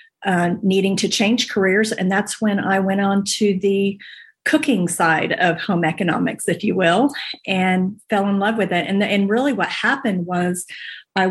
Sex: female